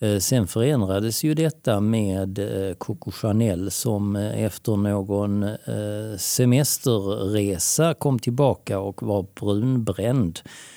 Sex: male